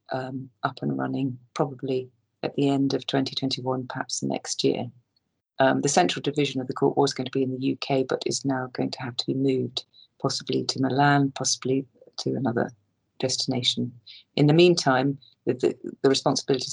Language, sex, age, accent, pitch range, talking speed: English, female, 40-59, British, 130-155 Hz, 175 wpm